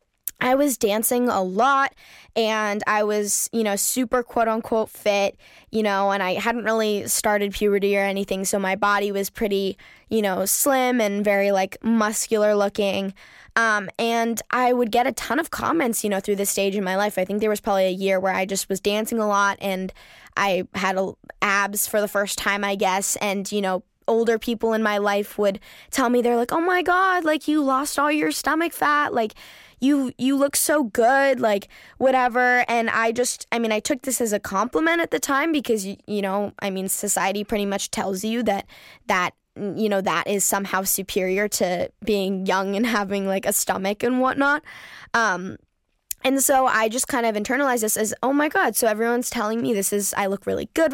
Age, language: 10-29, English